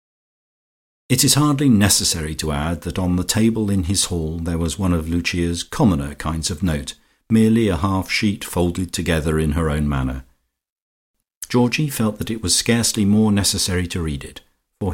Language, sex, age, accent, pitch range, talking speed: English, male, 50-69, British, 80-105 Hz, 175 wpm